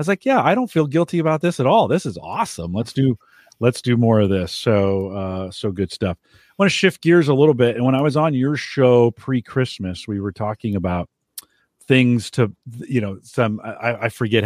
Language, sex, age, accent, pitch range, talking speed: English, male, 40-59, American, 100-135 Hz, 230 wpm